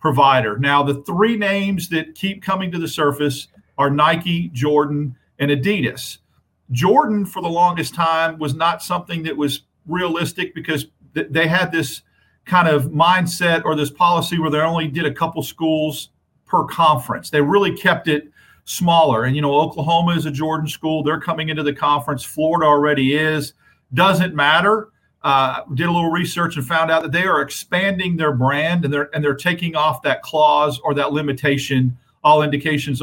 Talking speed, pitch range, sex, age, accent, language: 175 wpm, 140-170 Hz, male, 50-69, American, English